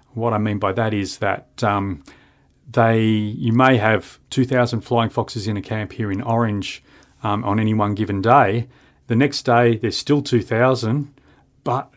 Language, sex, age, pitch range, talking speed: English, male, 40-59, 105-125 Hz, 170 wpm